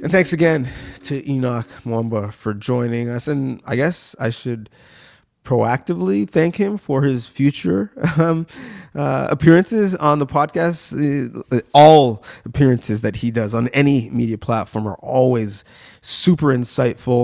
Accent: American